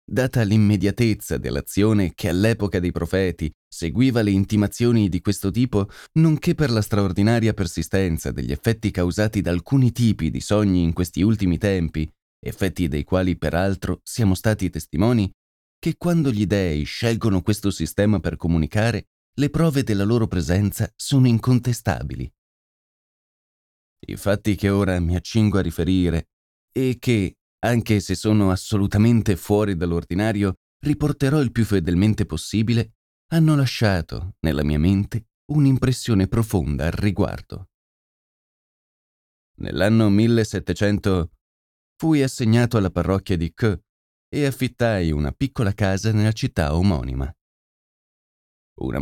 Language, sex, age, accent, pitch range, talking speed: Italian, male, 20-39, native, 85-110 Hz, 120 wpm